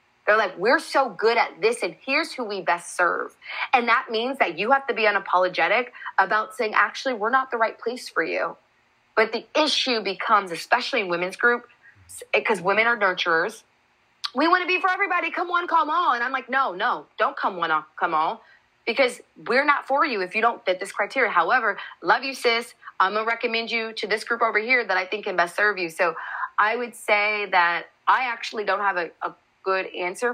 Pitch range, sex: 180-235 Hz, female